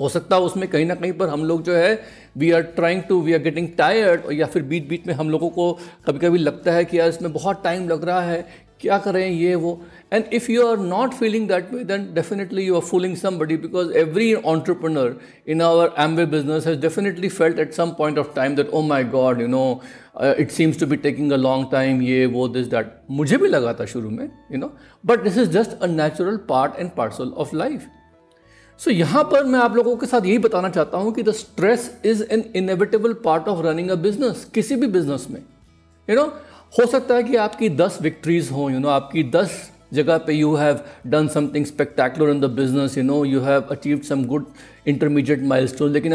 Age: 50-69